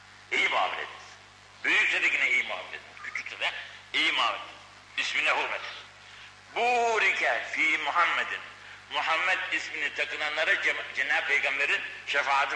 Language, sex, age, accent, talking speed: Turkish, male, 60-79, native, 105 wpm